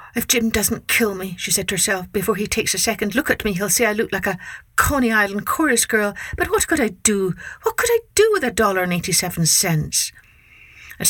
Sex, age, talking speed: female, 60-79, 225 wpm